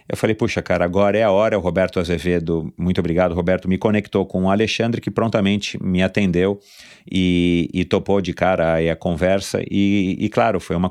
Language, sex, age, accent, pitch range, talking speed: Portuguese, male, 40-59, Brazilian, 85-100 Hz, 200 wpm